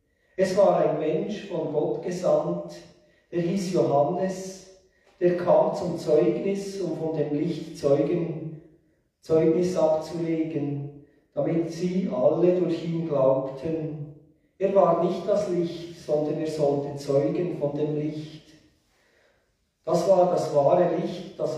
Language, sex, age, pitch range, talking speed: German, male, 40-59, 150-180 Hz, 125 wpm